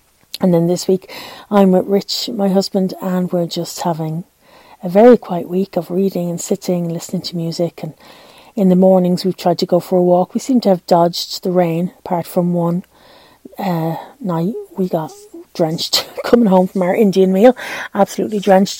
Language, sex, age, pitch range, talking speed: English, female, 30-49, 180-245 Hz, 190 wpm